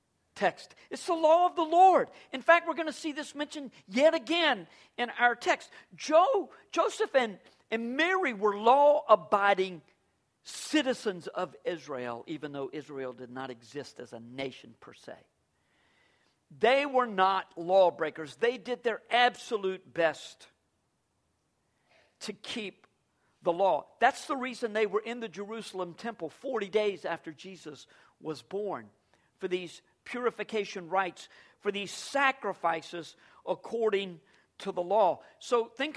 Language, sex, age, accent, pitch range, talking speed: English, male, 50-69, American, 160-240 Hz, 135 wpm